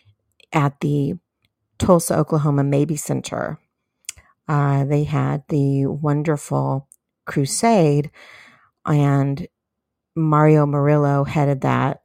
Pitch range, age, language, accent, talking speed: 130-145 Hz, 40-59, English, American, 85 wpm